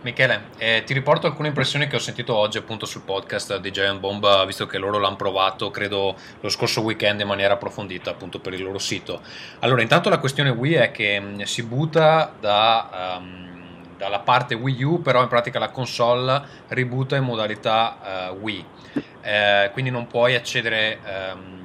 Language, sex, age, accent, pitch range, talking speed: Italian, male, 20-39, native, 100-130 Hz, 175 wpm